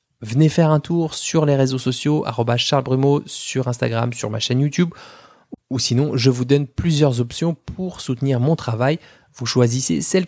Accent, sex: French, male